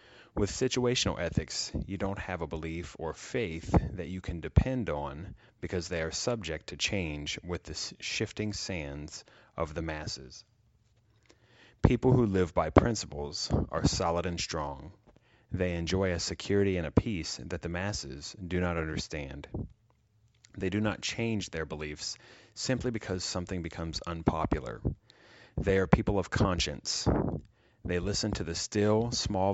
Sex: male